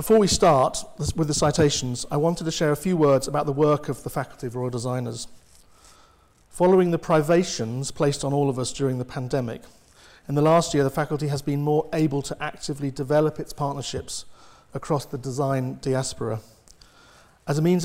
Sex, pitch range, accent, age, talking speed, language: male, 135-155 Hz, British, 40-59, 185 wpm, English